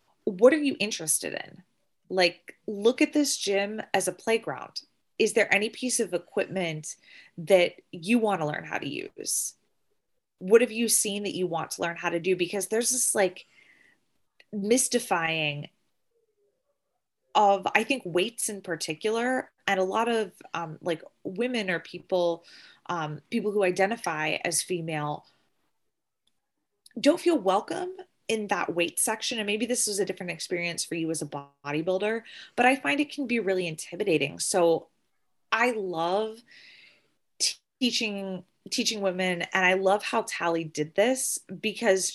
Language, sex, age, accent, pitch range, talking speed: English, female, 20-39, American, 175-225 Hz, 150 wpm